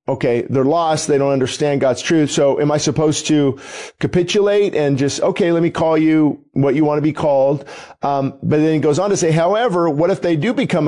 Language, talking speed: English, 225 wpm